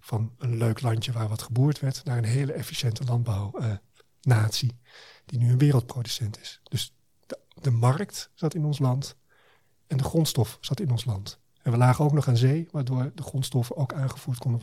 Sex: male